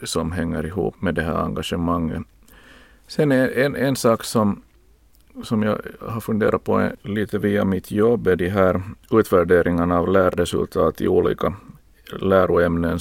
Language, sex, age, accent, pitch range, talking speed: Swedish, male, 50-69, Finnish, 85-100 Hz, 145 wpm